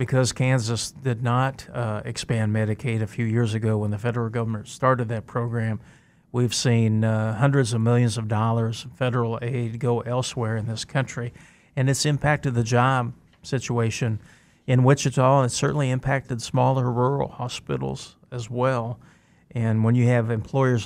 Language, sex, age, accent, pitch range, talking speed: English, male, 40-59, American, 115-130 Hz, 160 wpm